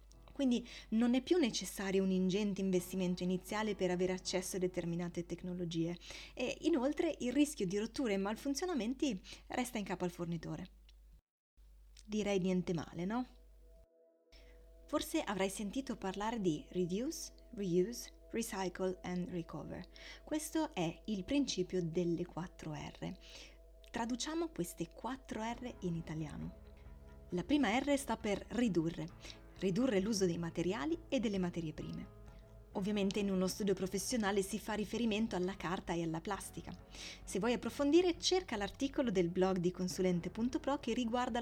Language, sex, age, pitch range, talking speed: Italian, female, 20-39, 175-245 Hz, 135 wpm